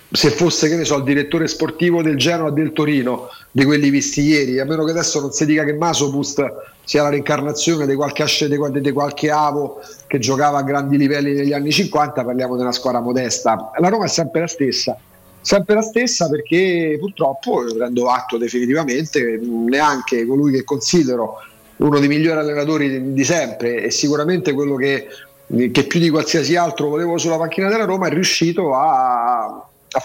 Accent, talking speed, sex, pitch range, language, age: native, 175 wpm, male, 140-170 Hz, Italian, 40-59